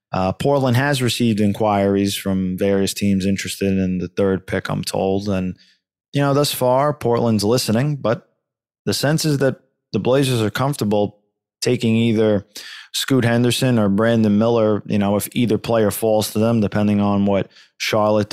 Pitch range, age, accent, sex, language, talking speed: 100-120 Hz, 20-39, American, male, English, 165 wpm